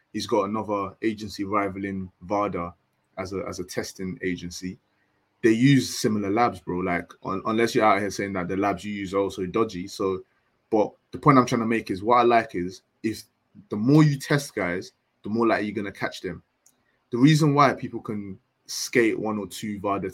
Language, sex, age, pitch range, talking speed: English, male, 20-39, 100-125 Hz, 205 wpm